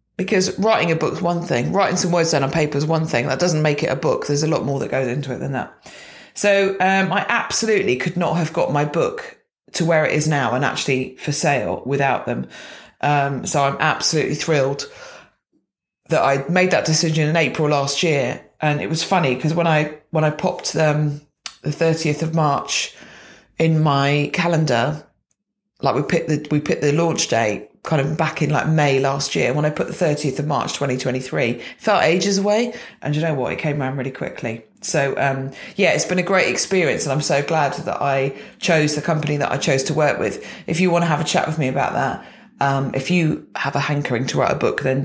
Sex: female